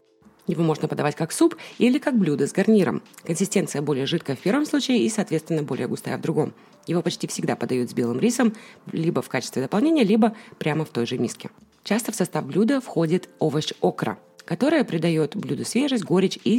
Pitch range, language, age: 155-210 Hz, Russian, 30-49